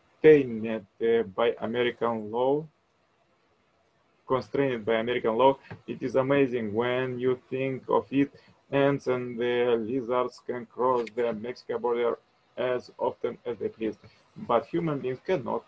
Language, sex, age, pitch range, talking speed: English, male, 20-39, 120-135 Hz, 125 wpm